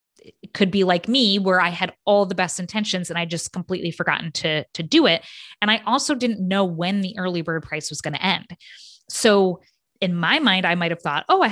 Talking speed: 230 wpm